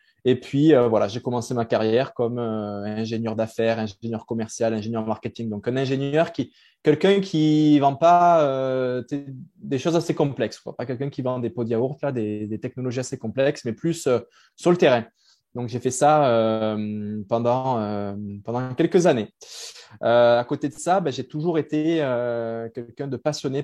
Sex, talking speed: male, 190 wpm